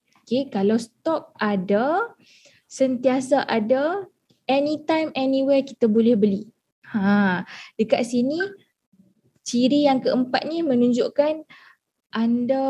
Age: 20-39